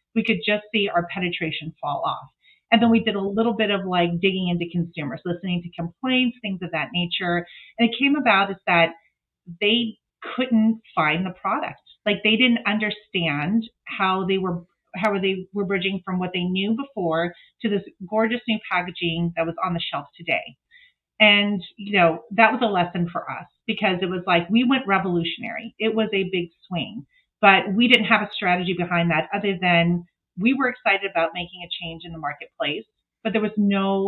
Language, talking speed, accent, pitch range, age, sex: English, 195 wpm, American, 175-225 Hz, 30-49, female